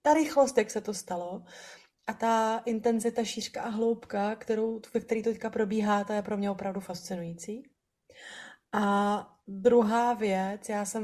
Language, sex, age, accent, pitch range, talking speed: Czech, female, 30-49, native, 205-240 Hz, 150 wpm